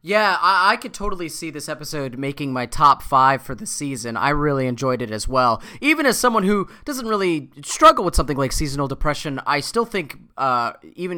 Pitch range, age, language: 140-195 Hz, 20-39, English